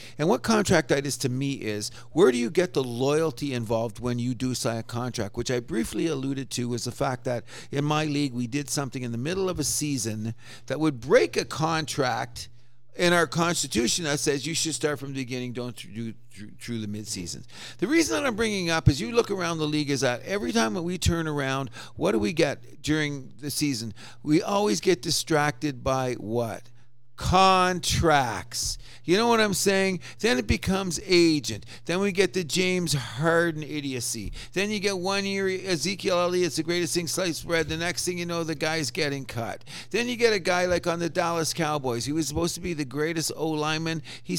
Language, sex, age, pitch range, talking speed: English, male, 50-69, 125-170 Hz, 210 wpm